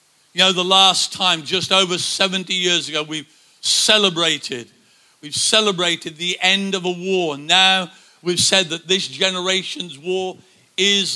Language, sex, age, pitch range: English, male, 50-69, 150-185 Hz